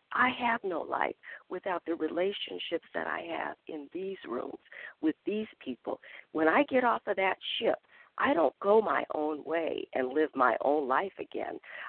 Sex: female